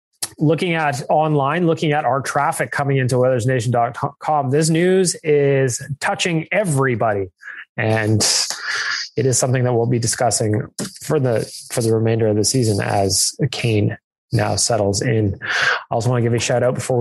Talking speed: 160 wpm